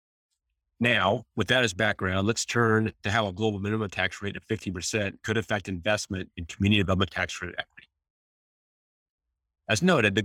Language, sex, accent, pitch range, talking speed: English, male, American, 90-110 Hz, 165 wpm